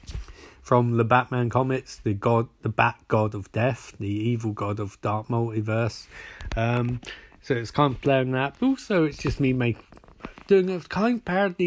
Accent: British